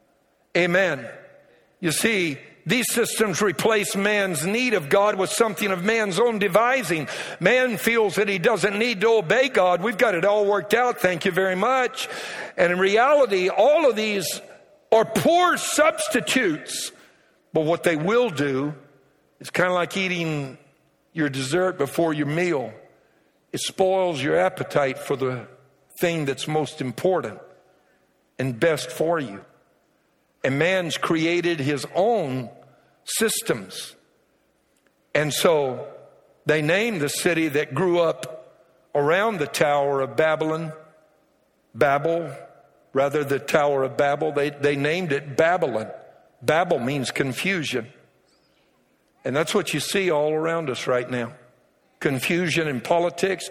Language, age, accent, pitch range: English, 60-79, American, 145-205 Hz